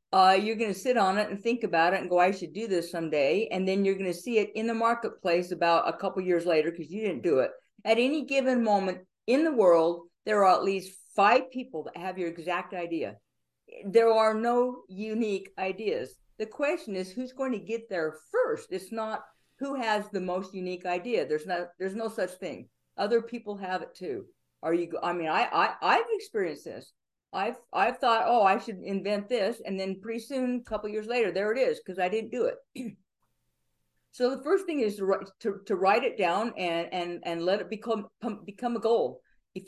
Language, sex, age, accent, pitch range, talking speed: English, female, 50-69, American, 185-235 Hz, 220 wpm